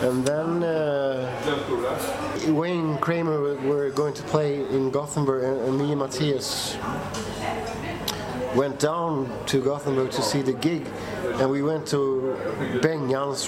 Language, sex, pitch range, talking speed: English, male, 120-150 Hz, 130 wpm